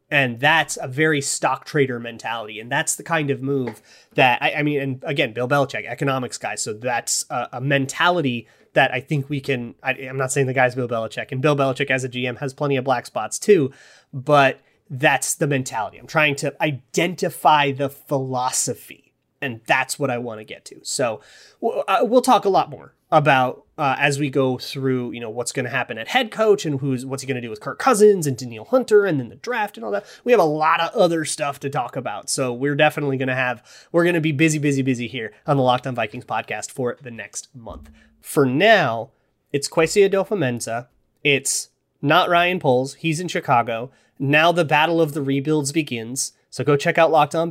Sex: male